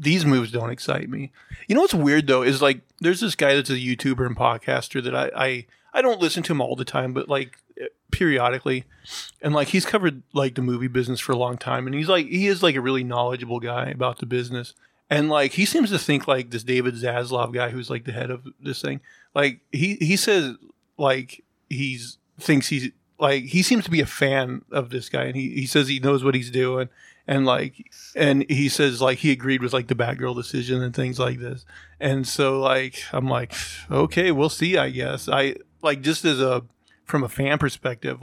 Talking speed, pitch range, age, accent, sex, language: 220 wpm, 125-150 Hz, 30-49, American, male, English